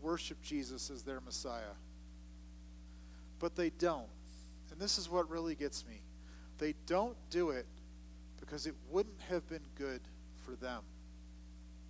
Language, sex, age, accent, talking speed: English, male, 40-59, American, 135 wpm